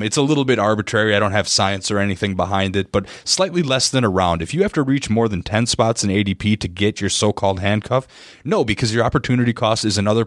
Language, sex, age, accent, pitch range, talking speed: English, male, 30-49, American, 95-125 Hz, 245 wpm